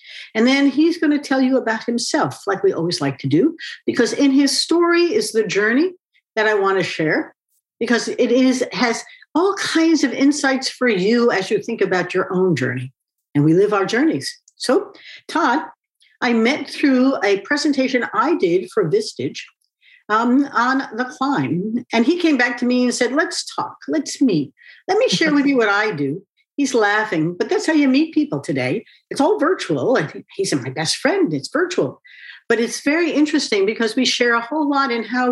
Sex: female